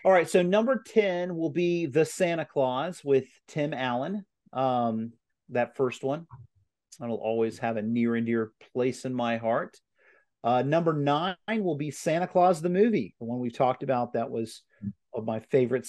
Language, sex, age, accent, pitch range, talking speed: English, male, 40-59, American, 115-155 Hz, 180 wpm